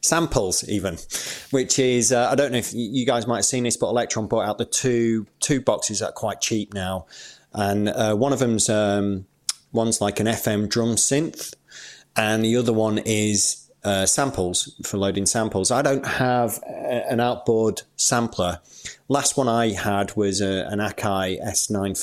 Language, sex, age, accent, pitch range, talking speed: English, male, 30-49, British, 100-125 Hz, 180 wpm